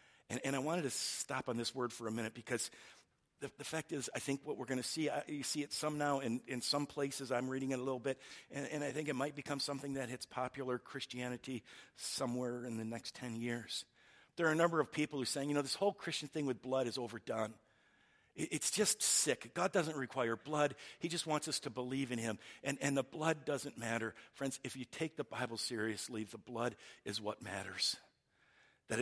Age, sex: 50-69, male